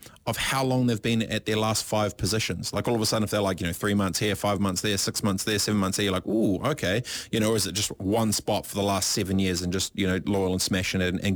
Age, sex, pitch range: 30-49, male, 105-135 Hz